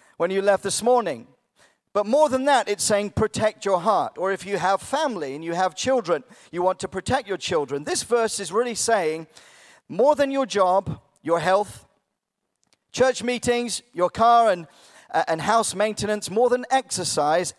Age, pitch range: 40-59, 175-230 Hz